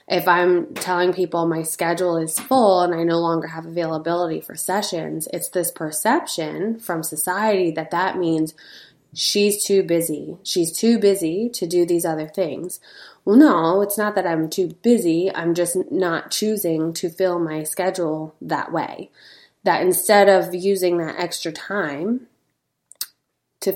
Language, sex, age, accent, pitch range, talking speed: English, female, 20-39, American, 160-195 Hz, 155 wpm